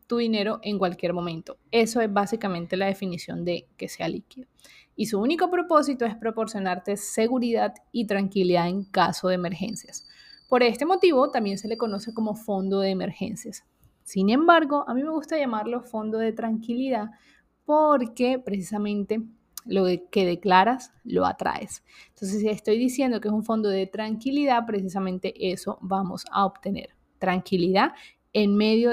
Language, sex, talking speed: Spanish, female, 150 wpm